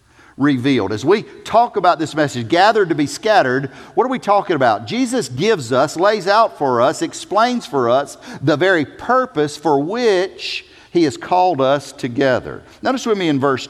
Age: 50-69